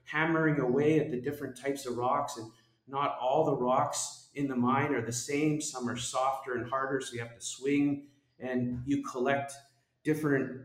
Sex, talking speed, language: male, 185 wpm, English